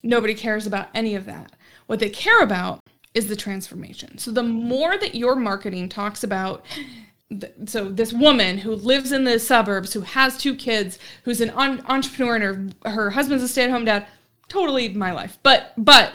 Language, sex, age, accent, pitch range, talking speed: English, female, 20-39, American, 210-270 Hz, 185 wpm